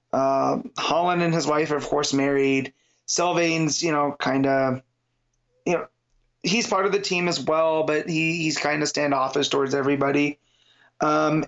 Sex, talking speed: male, 160 wpm